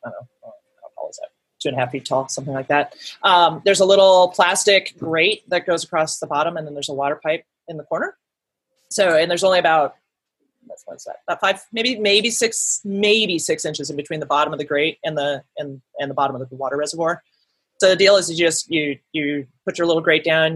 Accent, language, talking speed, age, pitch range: American, English, 235 wpm, 30-49, 140-175 Hz